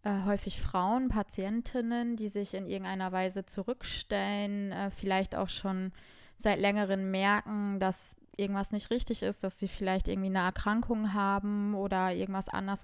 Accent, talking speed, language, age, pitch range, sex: German, 150 wpm, German, 20-39, 195-215 Hz, female